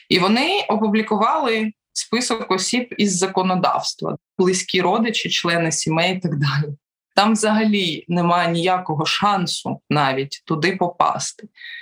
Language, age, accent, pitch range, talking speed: Ukrainian, 20-39, native, 170-210 Hz, 110 wpm